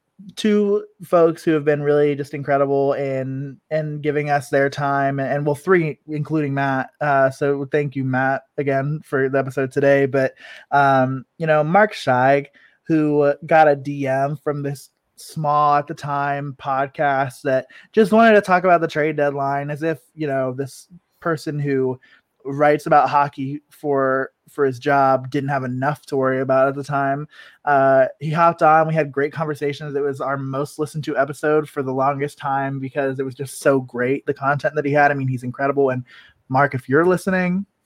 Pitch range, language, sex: 135-155 Hz, English, male